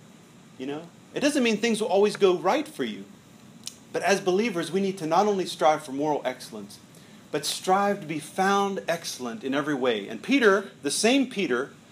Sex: male